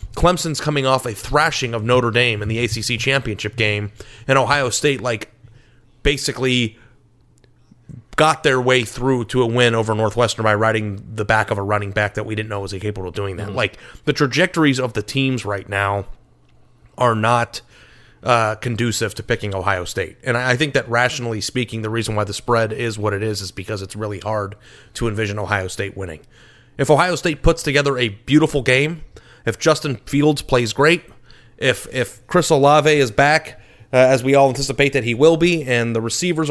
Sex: male